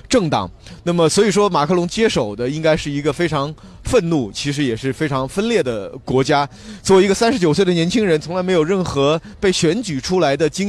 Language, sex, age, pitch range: Chinese, male, 30-49, 140-190 Hz